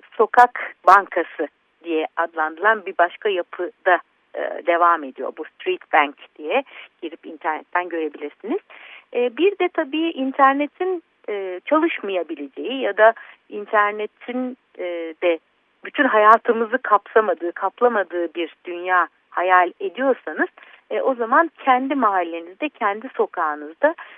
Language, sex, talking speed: Turkish, female, 110 wpm